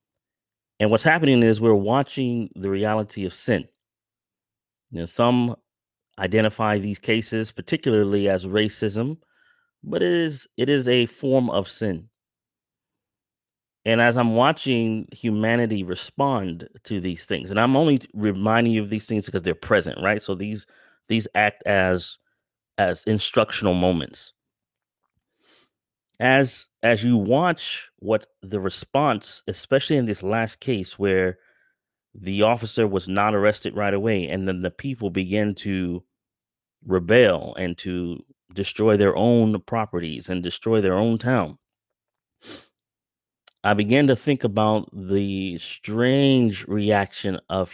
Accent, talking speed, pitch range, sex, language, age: American, 130 wpm, 95-120 Hz, male, English, 30-49